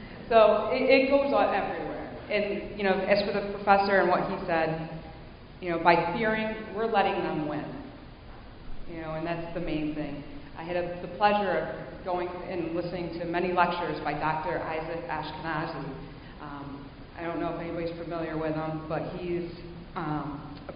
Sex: female